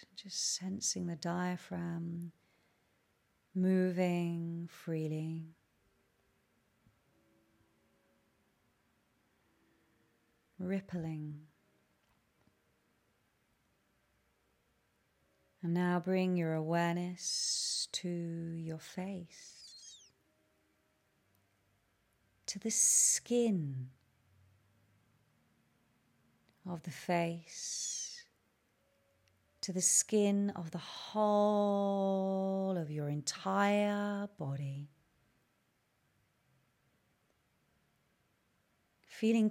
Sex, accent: female, British